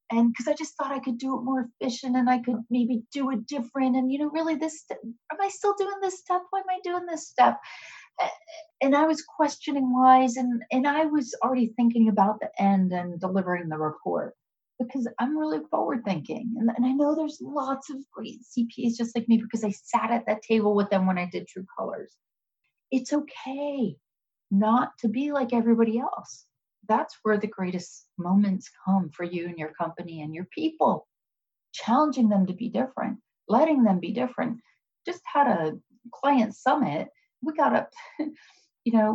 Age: 30-49